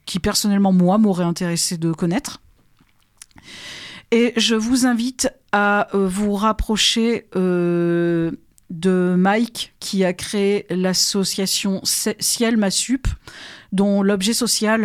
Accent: French